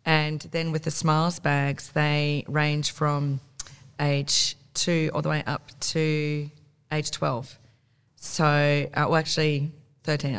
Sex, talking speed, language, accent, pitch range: female, 135 wpm, English, Australian, 135-150 Hz